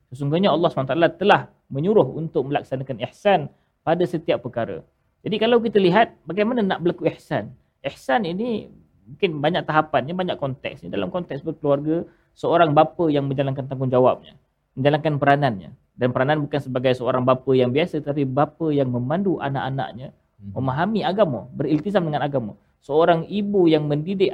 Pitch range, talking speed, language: 135-175 Hz, 150 wpm, Malayalam